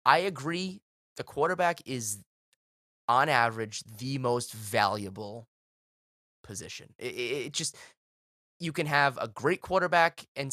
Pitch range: 105-140 Hz